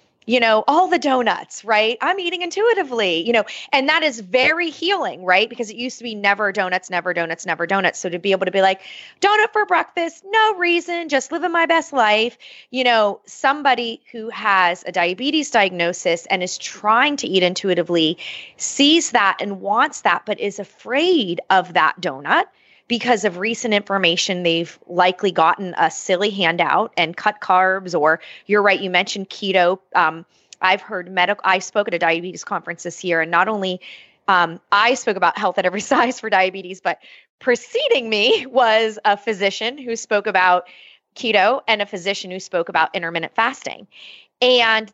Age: 30-49